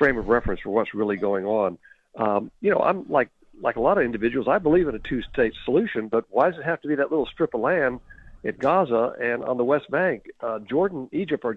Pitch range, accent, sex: 110-140 Hz, American, male